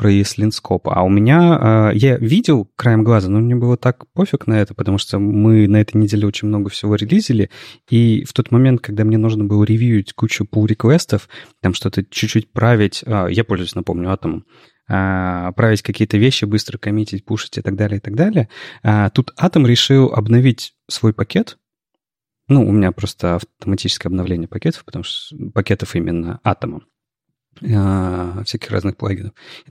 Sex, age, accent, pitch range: male, 30-49, native, 100-125 Hz